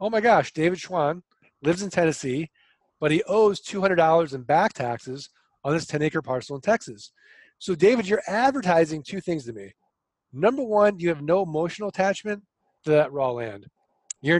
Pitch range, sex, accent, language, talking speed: 135-185 Hz, male, American, English, 170 wpm